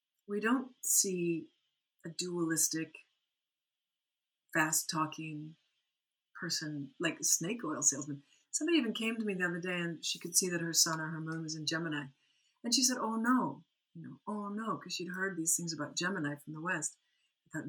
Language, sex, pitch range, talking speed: English, female, 160-245 Hz, 185 wpm